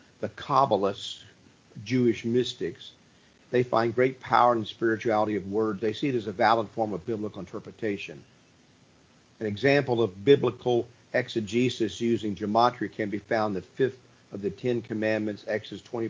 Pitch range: 110-125 Hz